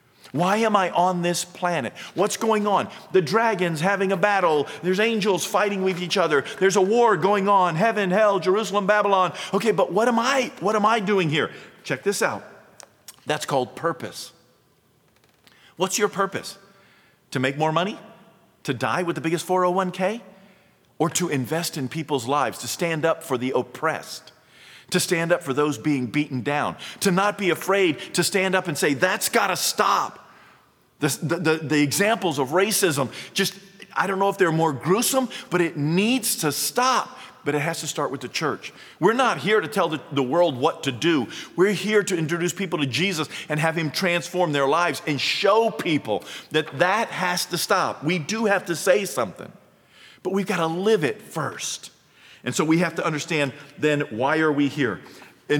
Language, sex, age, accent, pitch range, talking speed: English, male, 40-59, American, 150-195 Hz, 190 wpm